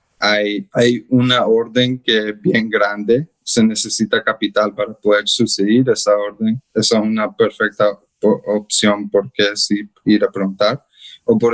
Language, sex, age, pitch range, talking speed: Spanish, male, 20-39, 105-120 Hz, 150 wpm